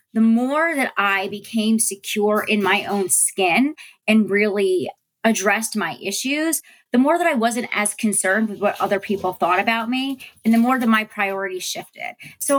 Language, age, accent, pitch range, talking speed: English, 30-49, American, 190-230 Hz, 175 wpm